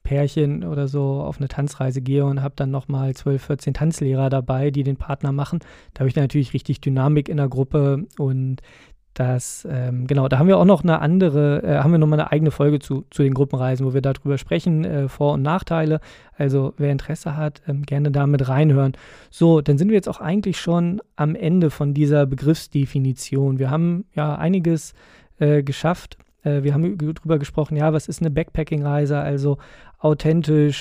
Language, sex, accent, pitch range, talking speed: German, male, German, 140-160 Hz, 190 wpm